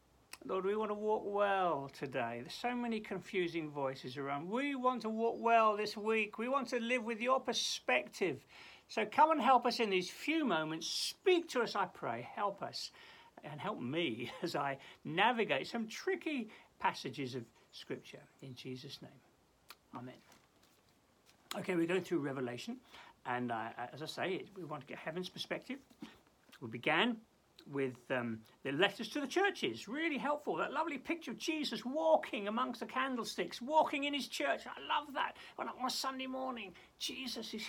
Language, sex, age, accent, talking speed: English, male, 60-79, British, 170 wpm